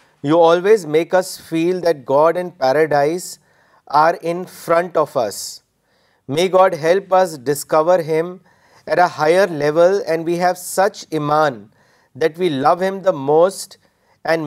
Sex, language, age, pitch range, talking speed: male, Urdu, 40-59, 150-180 Hz, 150 wpm